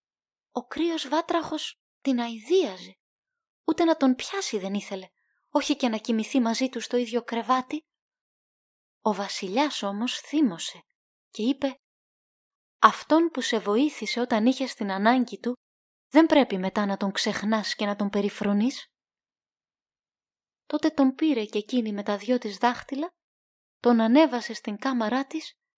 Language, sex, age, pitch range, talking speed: Greek, female, 20-39, 225-310 Hz, 140 wpm